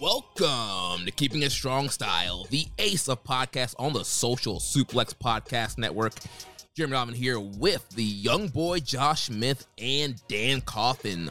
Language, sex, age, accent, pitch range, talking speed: English, male, 20-39, American, 110-130 Hz, 150 wpm